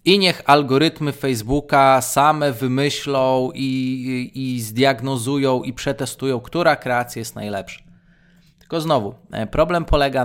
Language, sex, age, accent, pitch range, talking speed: Polish, male, 20-39, native, 120-155 Hz, 110 wpm